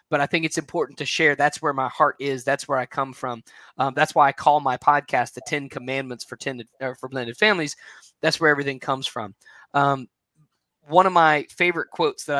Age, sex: 20-39, male